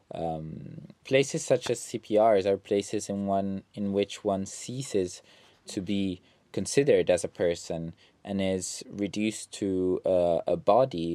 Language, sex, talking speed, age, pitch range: Italian, male, 140 wpm, 20-39, 85-110 Hz